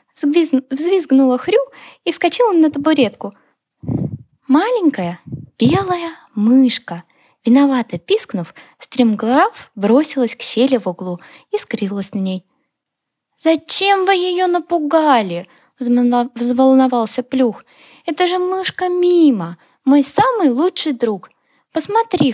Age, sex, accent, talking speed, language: 10-29, female, native, 100 wpm, Ukrainian